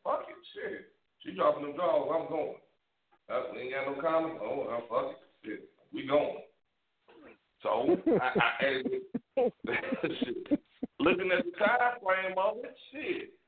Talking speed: 150 wpm